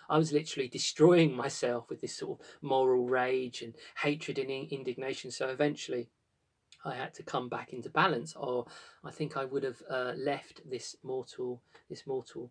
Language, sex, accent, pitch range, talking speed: English, male, British, 130-165 Hz, 175 wpm